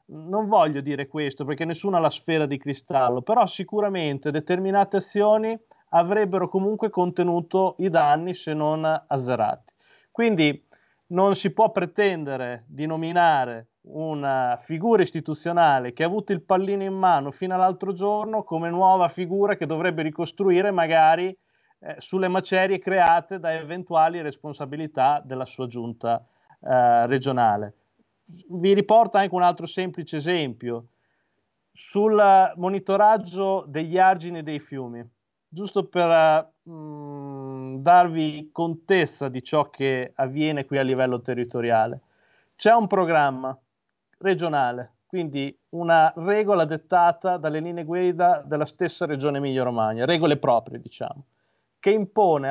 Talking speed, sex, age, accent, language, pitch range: 125 wpm, male, 30-49, native, Italian, 140-190 Hz